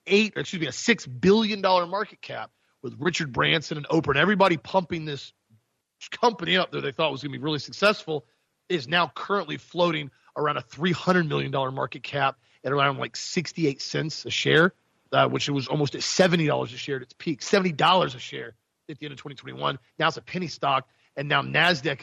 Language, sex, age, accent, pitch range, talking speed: English, male, 40-59, American, 140-175 Hz, 205 wpm